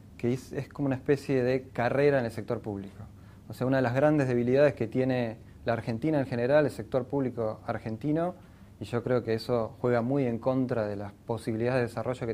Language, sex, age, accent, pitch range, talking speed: Spanish, male, 20-39, Argentinian, 110-135 Hz, 215 wpm